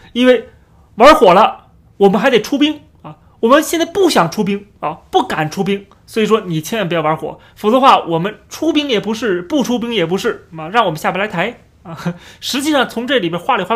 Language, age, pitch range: Chinese, 30-49, 185-250 Hz